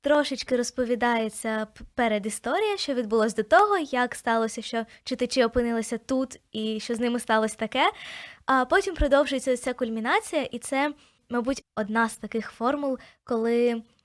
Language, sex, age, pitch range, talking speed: Ukrainian, female, 20-39, 230-280 Hz, 140 wpm